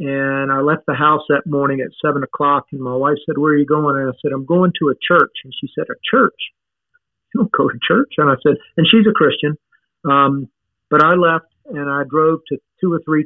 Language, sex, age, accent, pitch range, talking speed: English, male, 50-69, American, 140-170 Hz, 245 wpm